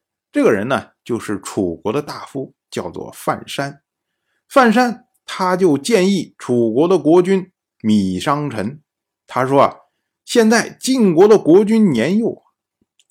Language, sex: Chinese, male